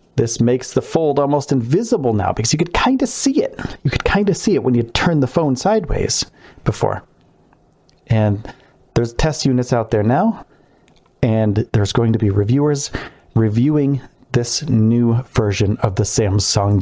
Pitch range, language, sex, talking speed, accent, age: 110-135 Hz, English, male, 170 wpm, American, 40-59